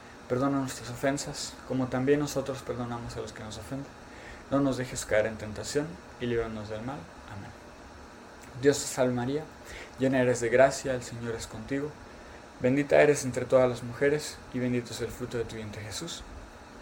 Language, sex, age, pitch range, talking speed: Spanish, male, 20-39, 110-135 Hz, 180 wpm